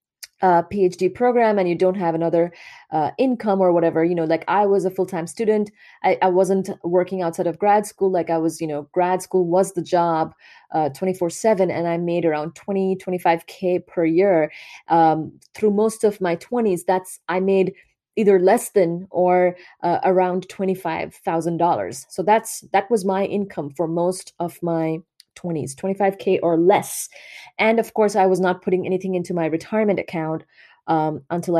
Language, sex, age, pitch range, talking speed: English, female, 20-39, 170-205 Hz, 175 wpm